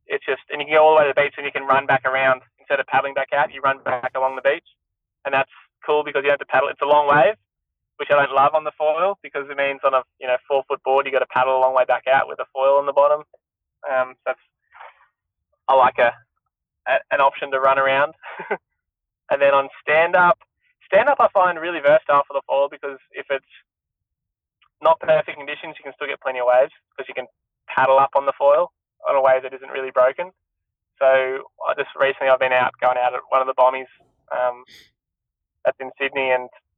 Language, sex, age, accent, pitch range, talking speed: English, male, 20-39, Australian, 130-150 Hz, 240 wpm